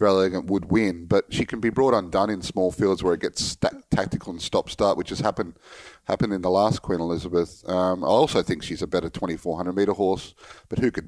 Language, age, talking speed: English, 30-49, 225 wpm